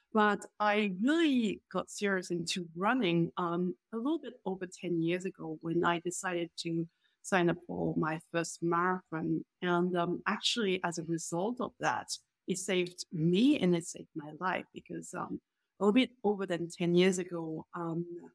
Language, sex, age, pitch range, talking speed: English, female, 30-49, 170-205 Hz, 170 wpm